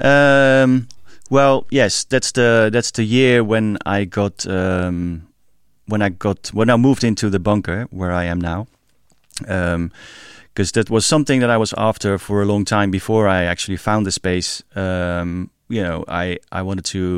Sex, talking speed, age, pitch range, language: male, 180 wpm, 30-49, 90-110 Hz, English